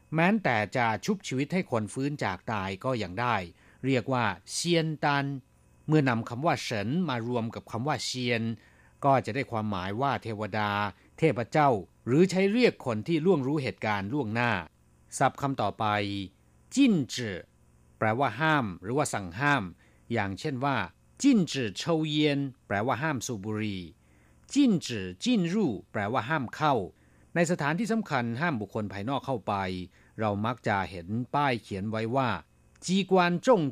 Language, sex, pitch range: Thai, male, 100-140 Hz